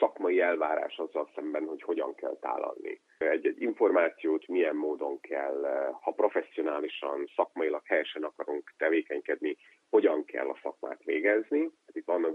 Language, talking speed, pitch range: Hungarian, 130 wpm, 320-410 Hz